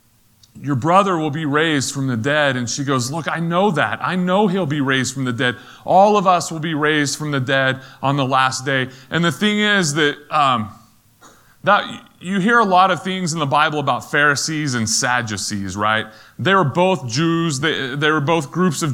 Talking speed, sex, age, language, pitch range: 210 wpm, male, 30-49, English, 120-170 Hz